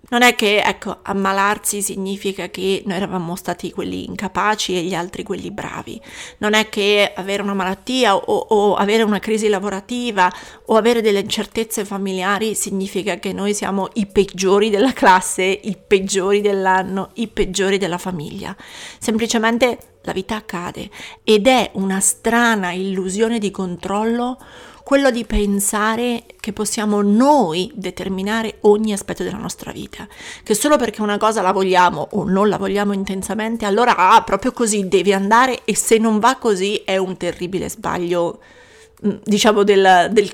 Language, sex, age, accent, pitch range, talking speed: Italian, female, 40-59, native, 195-230 Hz, 150 wpm